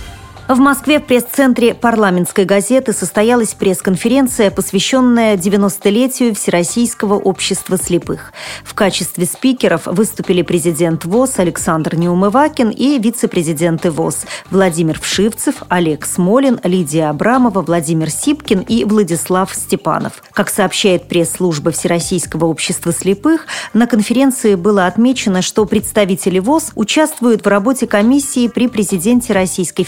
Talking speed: 110 wpm